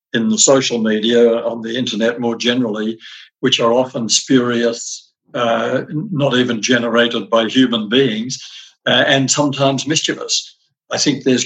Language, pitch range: English, 115-135 Hz